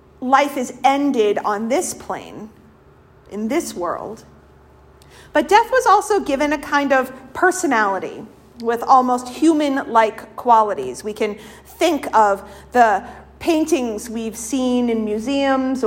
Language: English